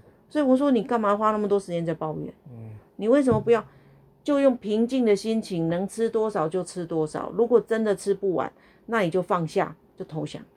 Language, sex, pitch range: Chinese, female, 165-220 Hz